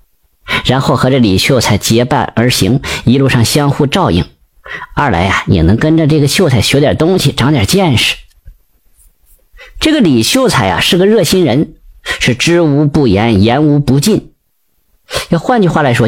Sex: female